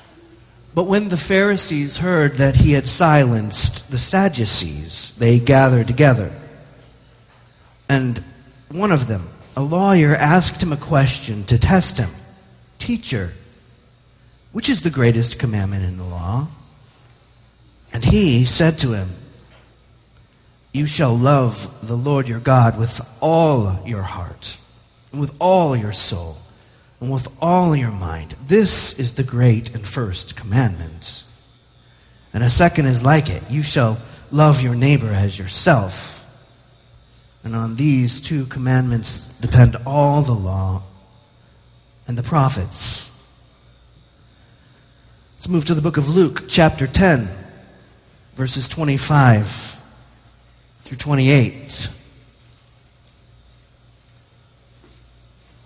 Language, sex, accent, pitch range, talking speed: English, male, American, 115-140 Hz, 115 wpm